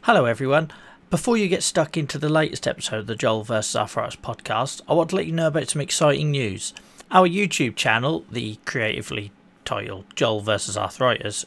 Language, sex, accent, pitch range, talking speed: English, male, British, 120-155 Hz, 185 wpm